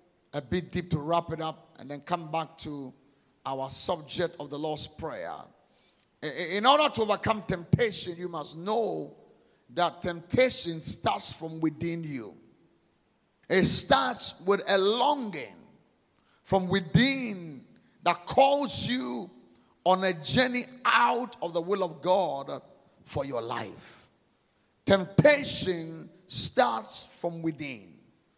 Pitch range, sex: 165-235 Hz, male